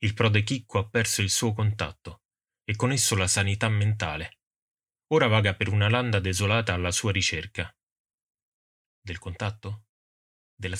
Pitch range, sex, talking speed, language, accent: 95-110 Hz, male, 145 wpm, Italian, native